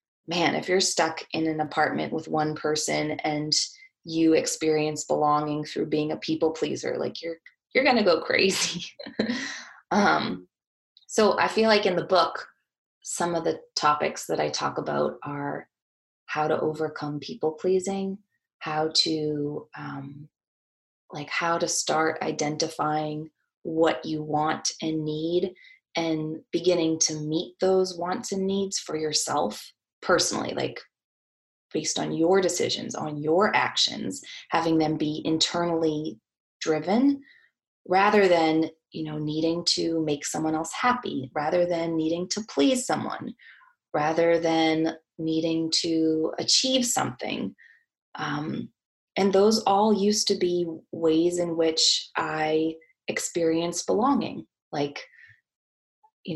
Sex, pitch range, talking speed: female, 155-190 Hz, 130 wpm